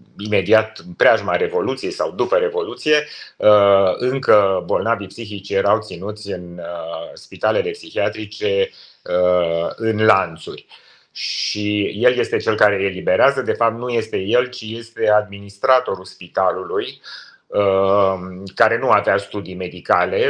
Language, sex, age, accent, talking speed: Romanian, male, 30-49, native, 110 wpm